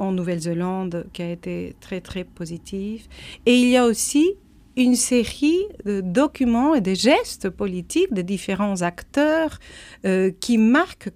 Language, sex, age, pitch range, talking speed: German, female, 50-69, 185-255 Hz, 145 wpm